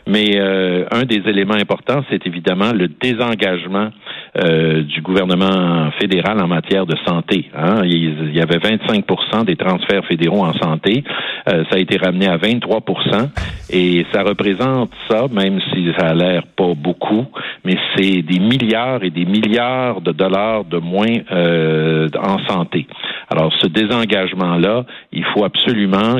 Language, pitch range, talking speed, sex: French, 85-100 Hz, 155 wpm, male